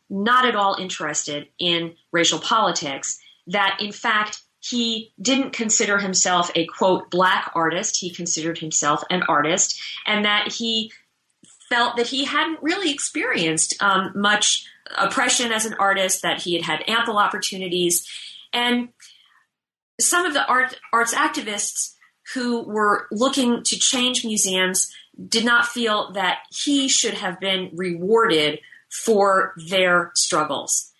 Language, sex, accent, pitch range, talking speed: English, female, American, 175-235 Hz, 130 wpm